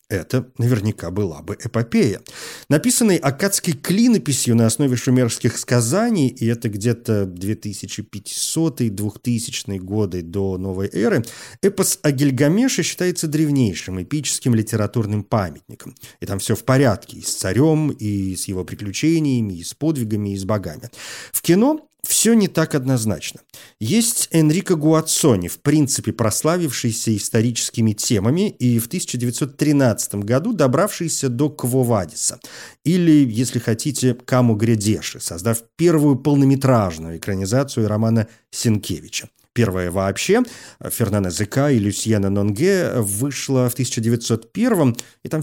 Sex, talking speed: male, 120 wpm